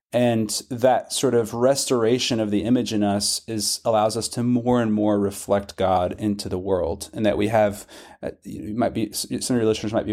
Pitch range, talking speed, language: 105-120 Hz, 215 wpm, English